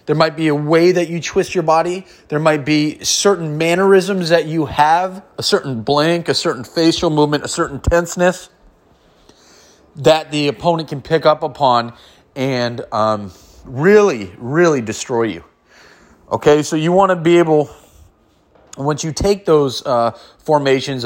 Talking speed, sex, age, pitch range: 155 wpm, male, 30-49, 115-170 Hz